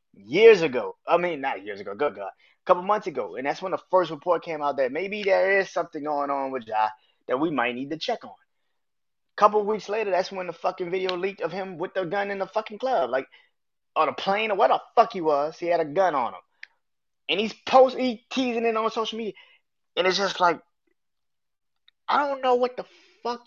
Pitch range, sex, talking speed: 150-235 Hz, male, 235 wpm